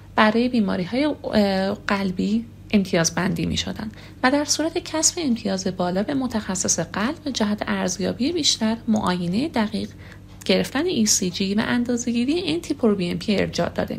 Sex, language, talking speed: female, Persian, 135 wpm